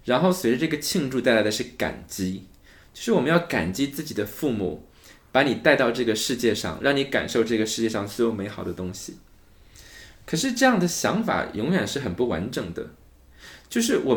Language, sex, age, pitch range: Chinese, male, 20-39, 100-145 Hz